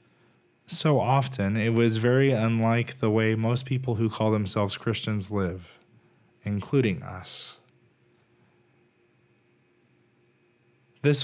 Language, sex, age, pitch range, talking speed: English, male, 20-39, 110-135 Hz, 95 wpm